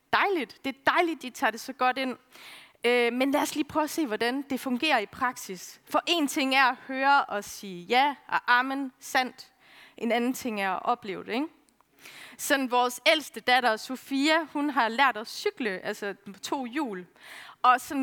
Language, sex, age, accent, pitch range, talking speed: Danish, female, 30-49, native, 215-275 Hz, 195 wpm